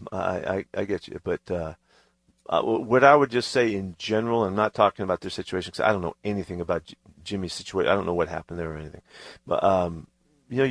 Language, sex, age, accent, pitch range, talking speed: English, male, 50-69, American, 95-110 Hz, 235 wpm